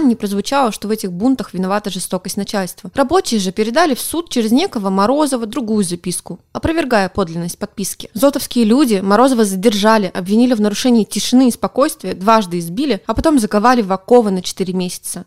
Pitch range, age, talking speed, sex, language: 195-245 Hz, 20-39, 165 wpm, female, Russian